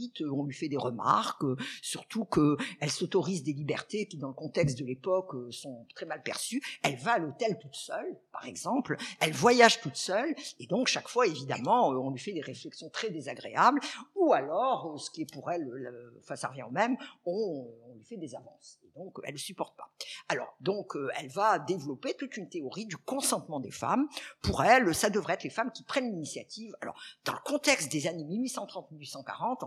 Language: French